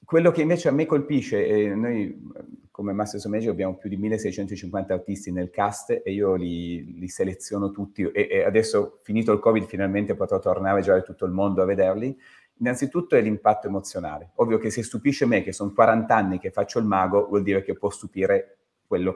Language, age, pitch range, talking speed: Italian, 30-49, 100-125 Hz, 195 wpm